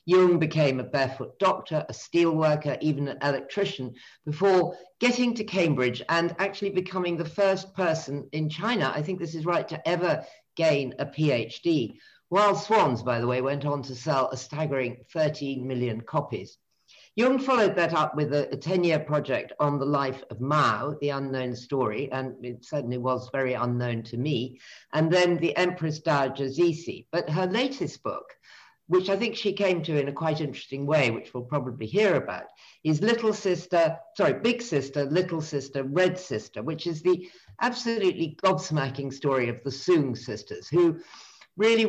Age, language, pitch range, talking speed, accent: 50-69, English, 135-180 Hz, 170 wpm, British